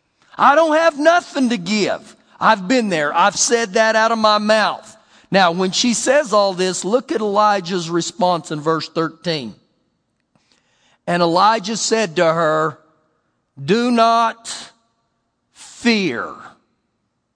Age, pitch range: 50-69, 190-260 Hz